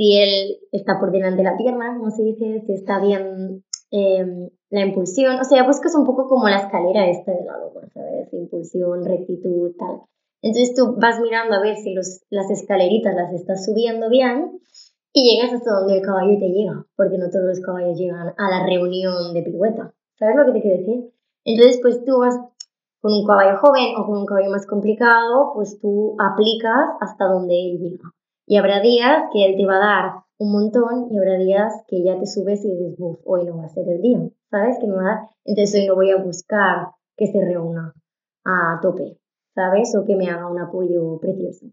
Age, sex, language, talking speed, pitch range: 20-39, male, Spanish, 205 wpm, 190-225 Hz